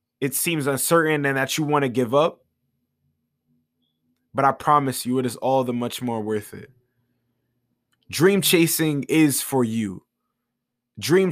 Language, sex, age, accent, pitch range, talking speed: English, male, 20-39, American, 120-155 Hz, 150 wpm